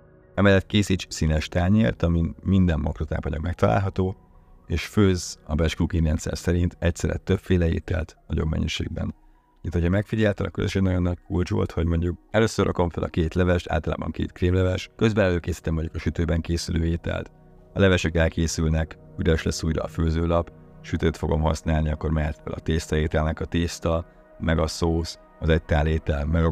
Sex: male